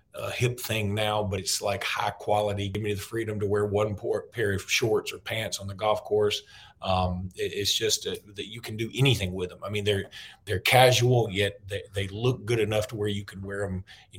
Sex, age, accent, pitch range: male, 40-59, American, 100-115 Hz